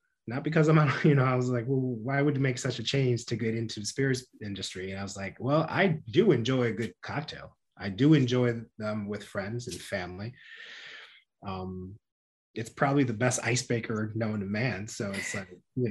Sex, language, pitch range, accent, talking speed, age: male, English, 105-135 Hz, American, 205 wpm, 30-49